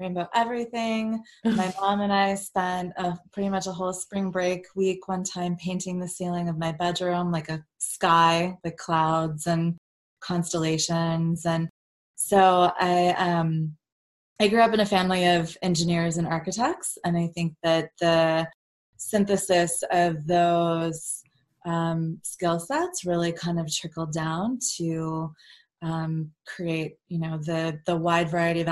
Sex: female